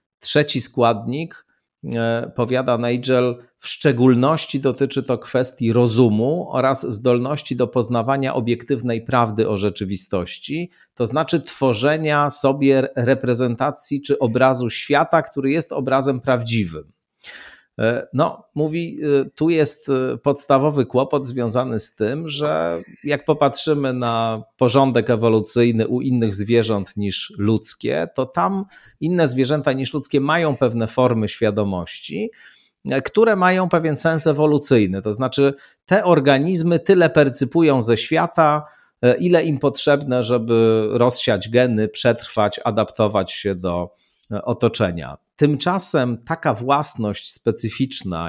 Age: 40-59